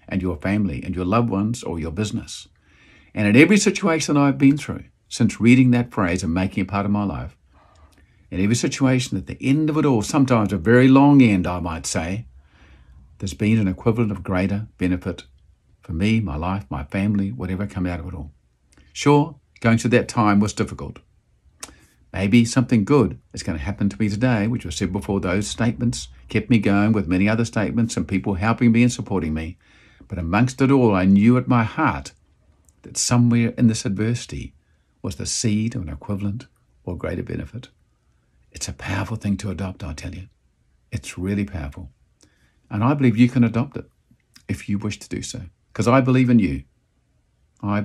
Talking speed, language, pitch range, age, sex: 195 wpm, English, 90-120 Hz, 50-69, male